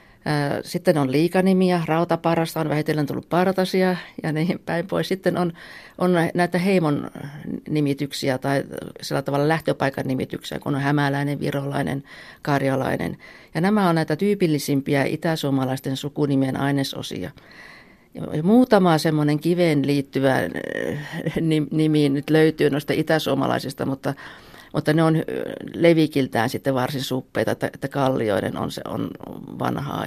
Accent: native